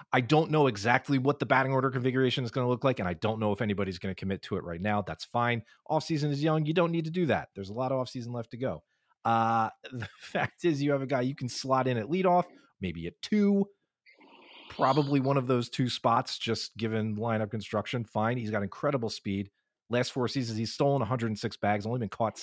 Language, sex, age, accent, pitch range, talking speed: English, male, 30-49, American, 110-145 Hz, 240 wpm